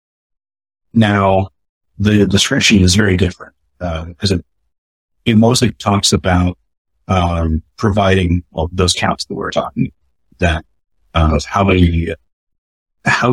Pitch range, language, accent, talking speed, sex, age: 80-100 Hz, English, American, 125 wpm, male, 40-59